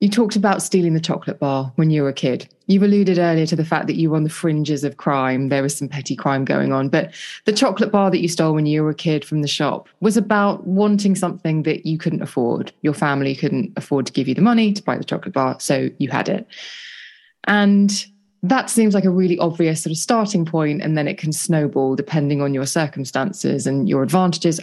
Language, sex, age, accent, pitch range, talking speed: English, female, 20-39, British, 145-190 Hz, 235 wpm